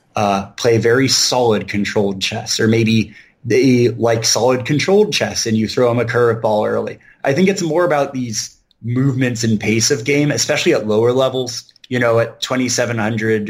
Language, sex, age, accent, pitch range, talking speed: English, male, 30-49, American, 105-120 Hz, 175 wpm